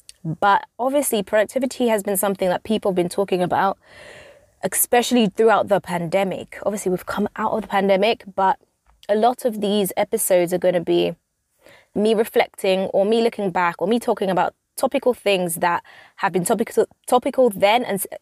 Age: 20-39